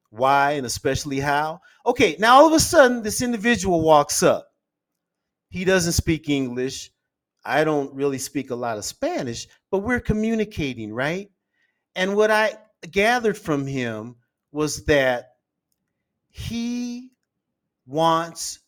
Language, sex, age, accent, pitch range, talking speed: English, male, 40-59, American, 135-190 Hz, 130 wpm